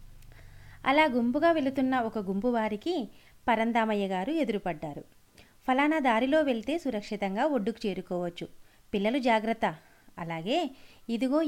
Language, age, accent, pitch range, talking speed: Telugu, 30-49, native, 195-265 Hz, 100 wpm